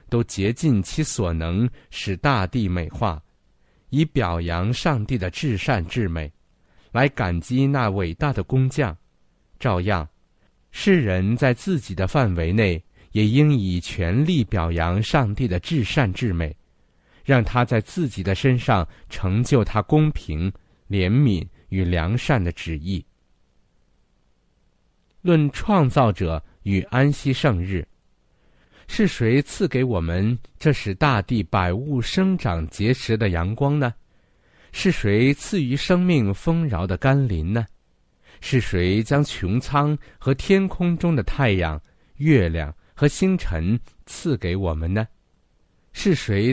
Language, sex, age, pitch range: Chinese, male, 50-69, 90-140 Hz